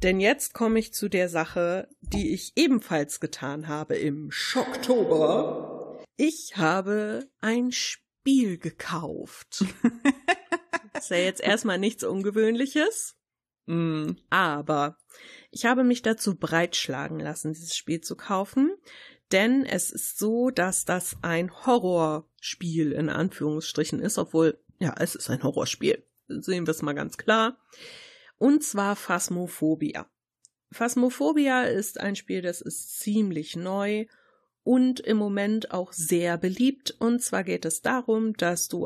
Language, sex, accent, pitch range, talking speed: German, female, German, 170-235 Hz, 130 wpm